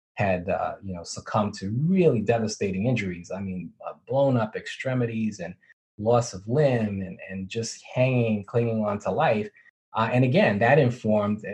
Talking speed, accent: 165 wpm, American